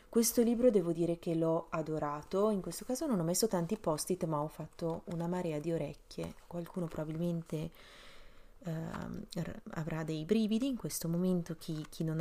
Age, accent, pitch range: 30-49, native, 160-195 Hz